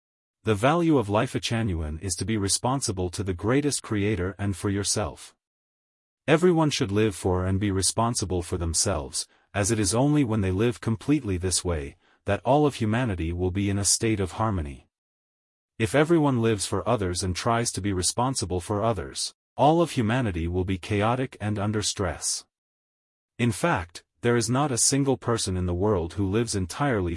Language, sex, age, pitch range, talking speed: English, male, 30-49, 90-120 Hz, 180 wpm